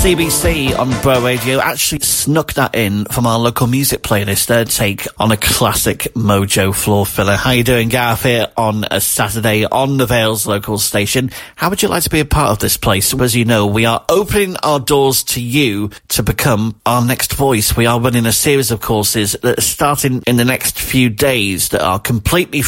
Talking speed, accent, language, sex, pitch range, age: 210 wpm, British, English, male, 100-130 Hz, 40-59